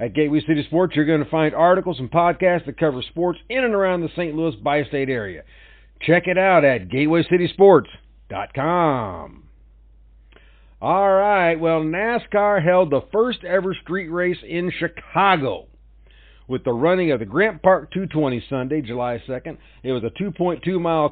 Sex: male